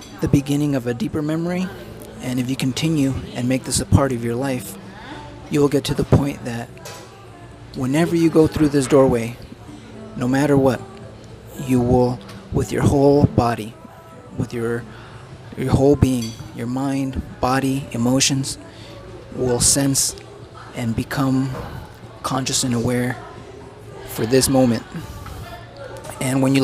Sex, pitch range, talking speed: male, 115-140 Hz, 135 wpm